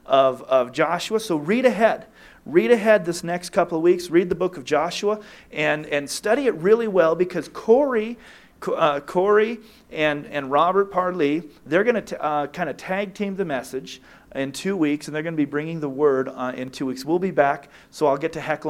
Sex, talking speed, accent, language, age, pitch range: male, 205 wpm, American, English, 40-59, 145-190 Hz